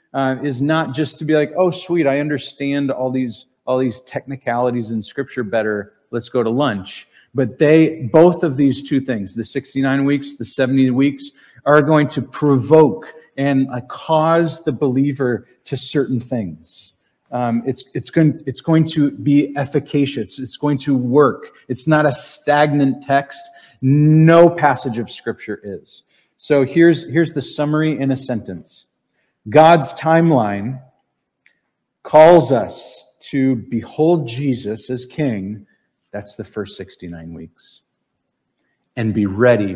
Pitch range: 115-150 Hz